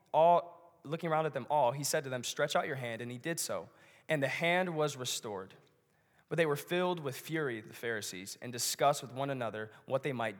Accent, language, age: American, English, 20-39